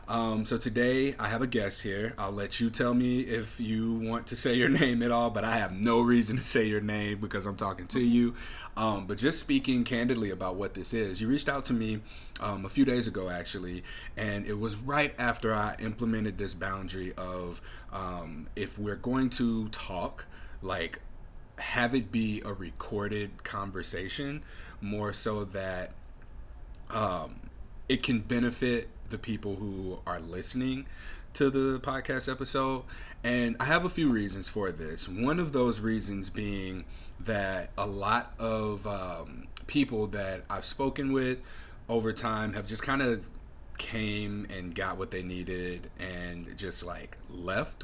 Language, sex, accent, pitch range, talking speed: English, male, American, 95-120 Hz, 170 wpm